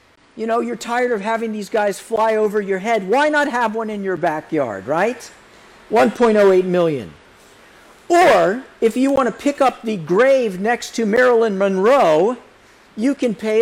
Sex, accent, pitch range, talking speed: male, American, 190-240 Hz, 170 wpm